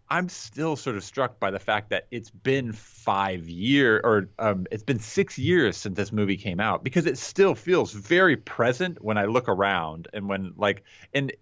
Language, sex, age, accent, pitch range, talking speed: English, male, 30-49, American, 100-135 Hz, 200 wpm